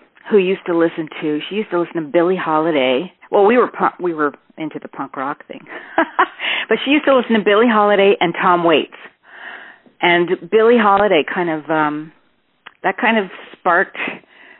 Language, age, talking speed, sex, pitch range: English, 40-59, 180 wpm, female, 150-180 Hz